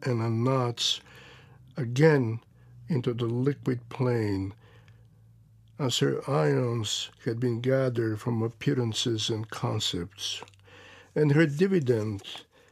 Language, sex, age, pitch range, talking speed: English, male, 60-79, 120-155 Hz, 100 wpm